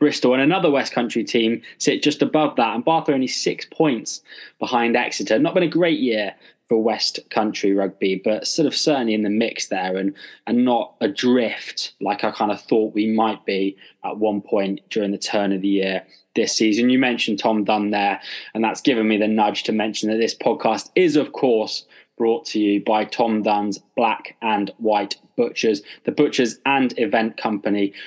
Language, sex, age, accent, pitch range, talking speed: English, male, 20-39, British, 105-120 Hz, 195 wpm